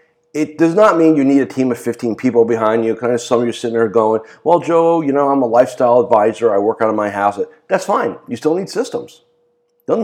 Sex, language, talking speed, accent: male, English, 250 wpm, American